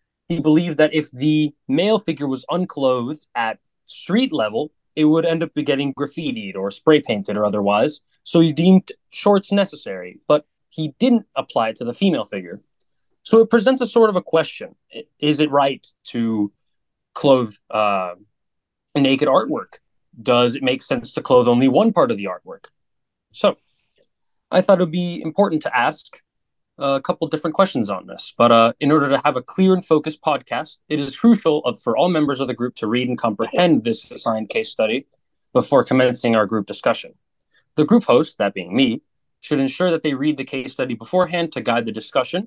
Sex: male